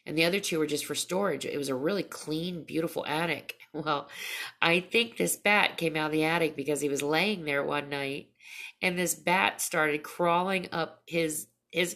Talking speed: 200 wpm